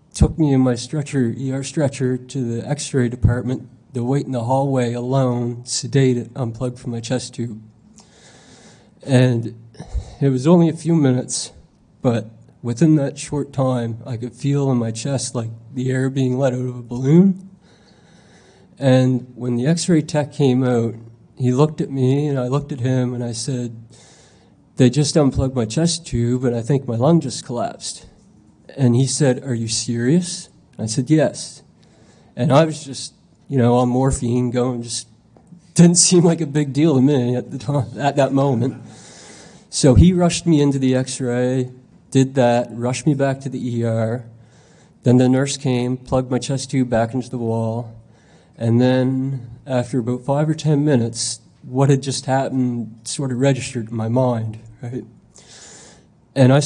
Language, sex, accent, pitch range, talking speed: English, male, American, 120-140 Hz, 175 wpm